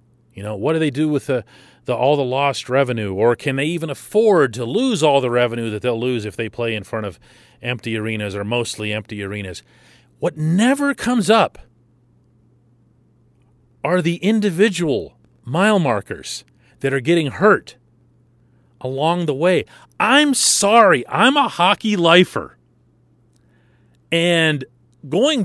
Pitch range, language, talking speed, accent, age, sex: 120-185 Hz, English, 145 wpm, American, 40-59, male